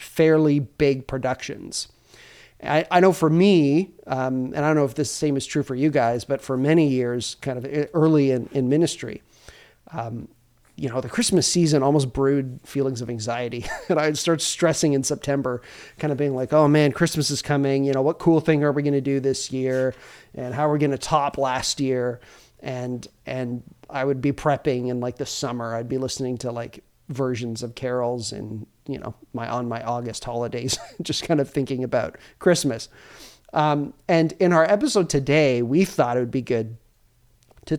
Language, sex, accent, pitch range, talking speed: English, male, American, 125-155 Hz, 195 wpm